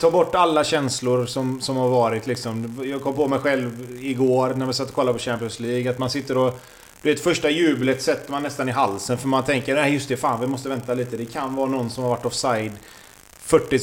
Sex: male